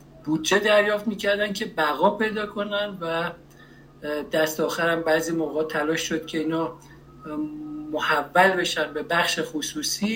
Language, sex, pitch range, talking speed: Persian, male, 155-200 Hz, 125 wpm